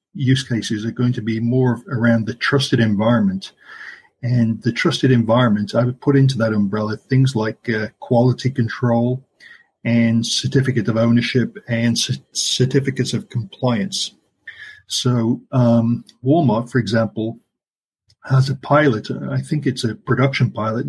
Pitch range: 115-135 Hz